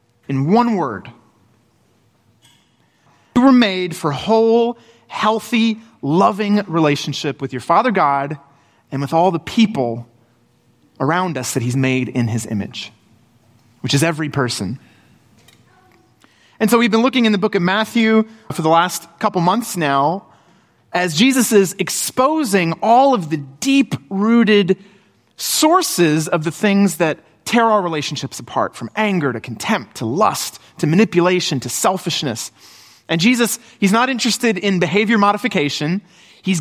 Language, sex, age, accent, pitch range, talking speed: English, male, 30-49, American, 130-215 Hz, 140 wpm